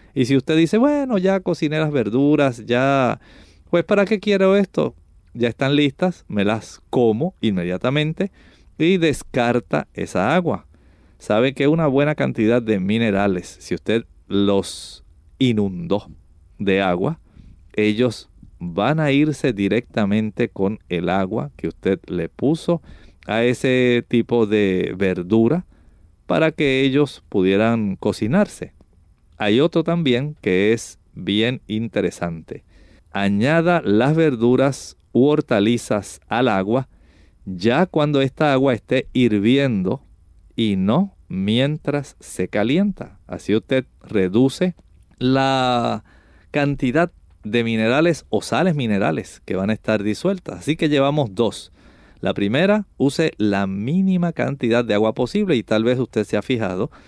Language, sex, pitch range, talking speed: Spanish, male, 95-145 Hz, 125 wpm